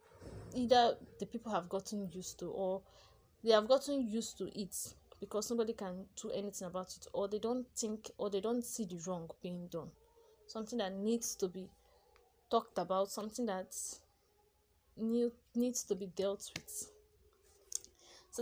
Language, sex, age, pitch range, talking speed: English, female, 20-39, 195-240 Hz, 160 wpm